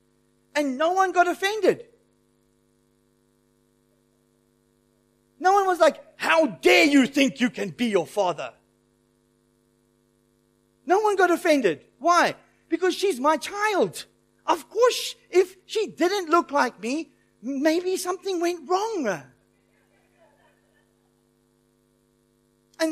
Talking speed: 105 wpm